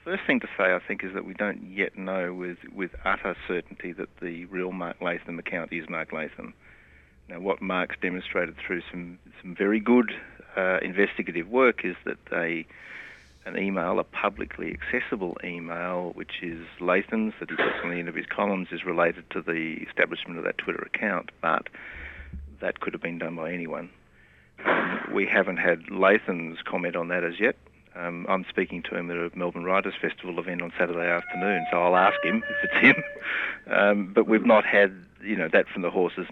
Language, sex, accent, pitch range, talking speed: English, male, Australian, 85-100 Hz, 195 wpm